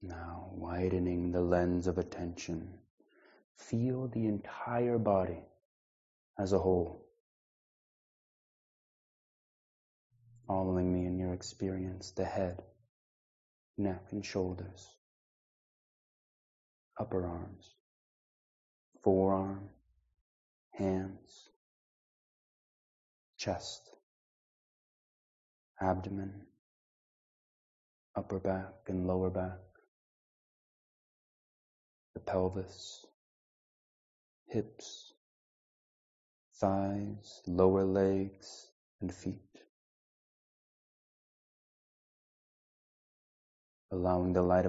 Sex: male